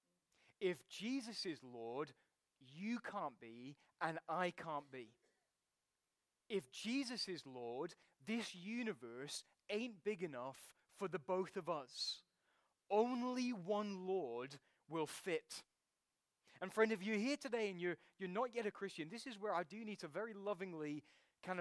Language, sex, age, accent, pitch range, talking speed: English, male, 20-39, British, 135-200 Hz, 145 wpm